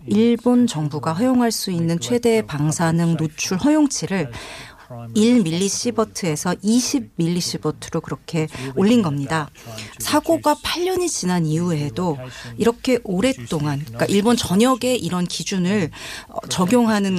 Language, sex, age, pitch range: Korean, female, 40-59, 155-220 Hz